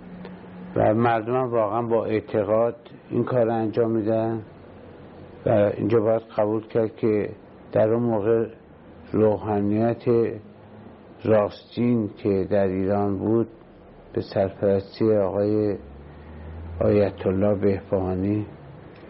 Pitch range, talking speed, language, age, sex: 100-115 Hz, 95 wpm, Persian, 60-79, male